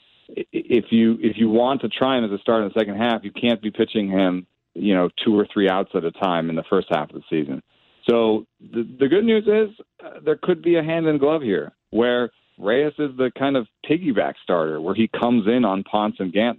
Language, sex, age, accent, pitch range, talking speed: English, male, 40-59, American, 105-125 Hz, 245 wpm